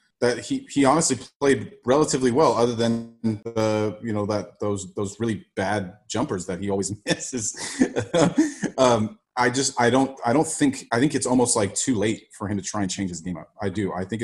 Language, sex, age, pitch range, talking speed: English, male, 30-49, 100-120 Hz, 210 wpm